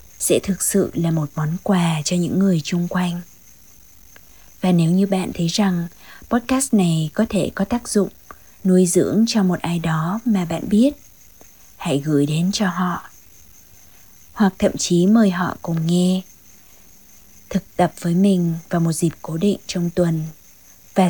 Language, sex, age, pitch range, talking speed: Vietnamese, female, 20-39, 165-195 Hz, 165 wpm